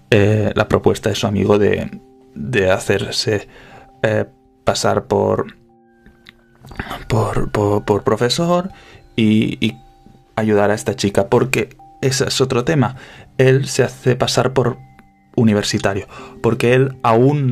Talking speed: 125 wpm